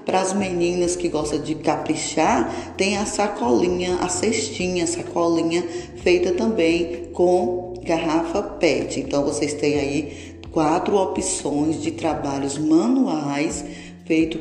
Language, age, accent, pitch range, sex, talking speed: Portuguese, 20-39, Brazilian, 140-165 Hz, female, 120 wpm